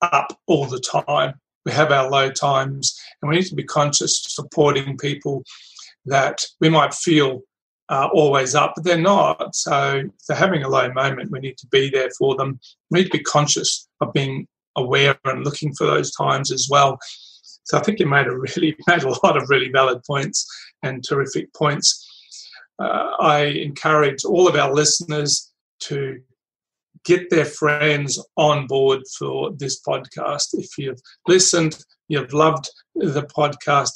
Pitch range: 135-155 Hz